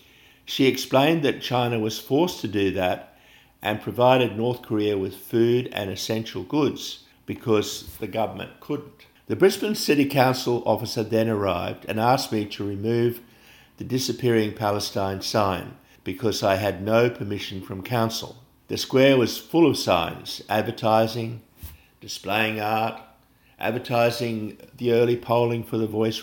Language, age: English, 50-69